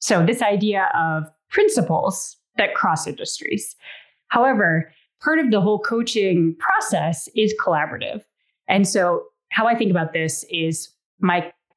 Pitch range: 165-230 Hz